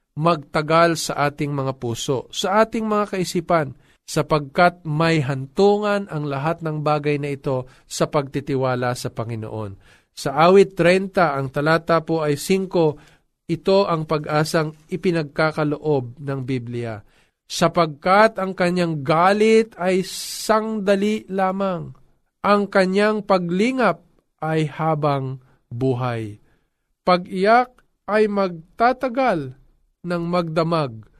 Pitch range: 135-180 Hz